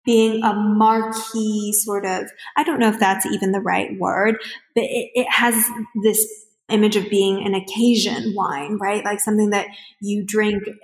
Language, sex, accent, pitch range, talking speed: English, female, American, 195-225 Hz, 170 wpm